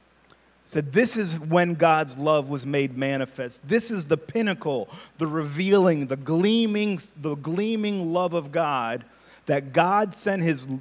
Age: 30-49